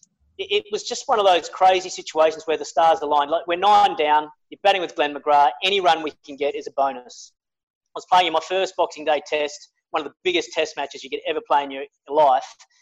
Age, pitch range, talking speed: 30-49, 145-180 Hz, 240 wpm